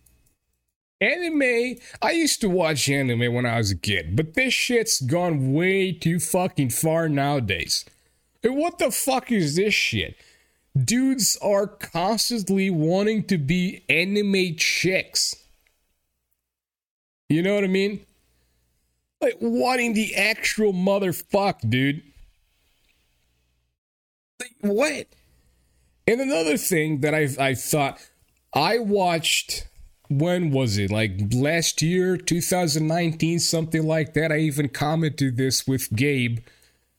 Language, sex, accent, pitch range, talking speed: English, male, American, 110-165 Hz, 120 wpm